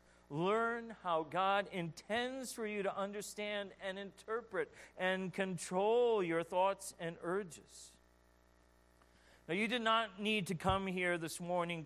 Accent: American